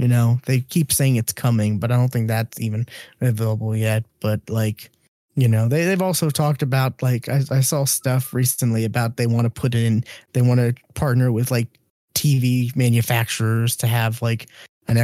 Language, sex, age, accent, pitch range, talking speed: English, male, 20-39, American, 120-140 Hz, 190 wpm